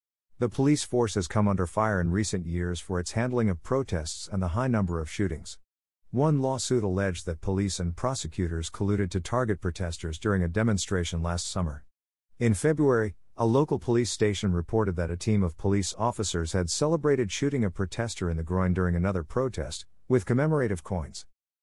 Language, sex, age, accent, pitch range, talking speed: English, male, 50-69, American, 85-115 Hz, 180 wpm